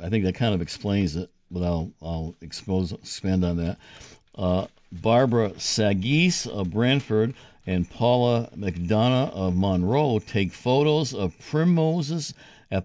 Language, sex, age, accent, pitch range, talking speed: English, male, 60-79, American, 95-130 Hz, 135 wpm